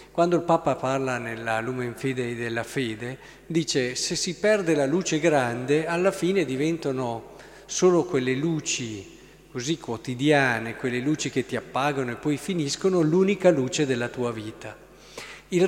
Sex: male